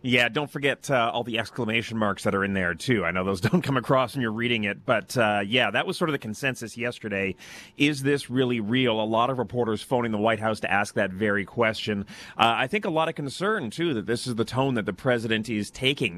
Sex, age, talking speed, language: male, 30-49, 250 wpm, English